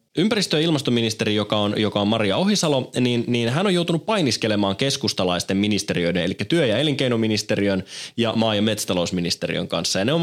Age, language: 20-39, Finnish